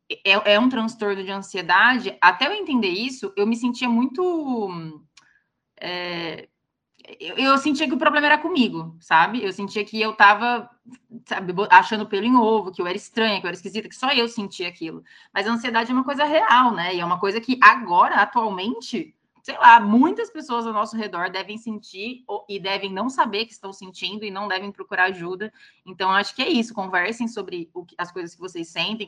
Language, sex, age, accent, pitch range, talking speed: Portuguese, female, 20-39, Brazilian, 175-230 Hz, 200 wpm